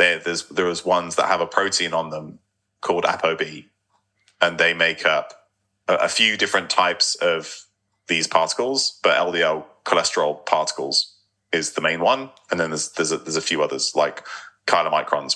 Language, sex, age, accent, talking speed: English, male, 30-49, British, 165 wpm